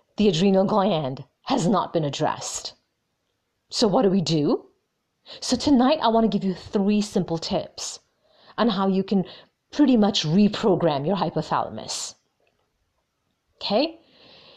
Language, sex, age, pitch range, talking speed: English, female, 40-59, 170-230 Hz, 130 wpm